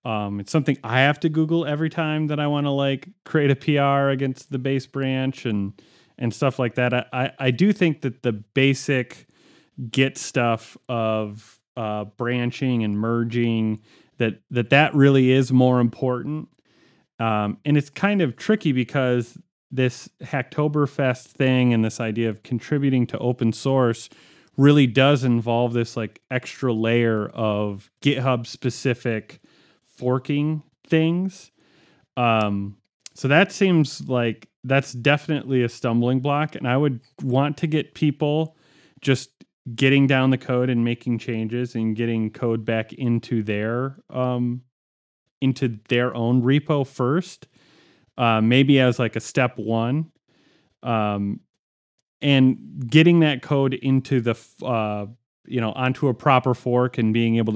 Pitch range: 115-140 Hz